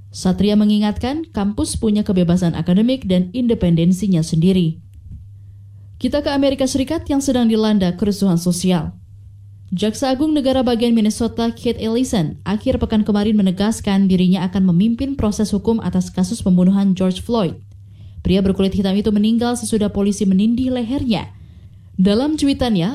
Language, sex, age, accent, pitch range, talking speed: Indonesian, female, 20-39, native, 175-230 Hz, 130 wpm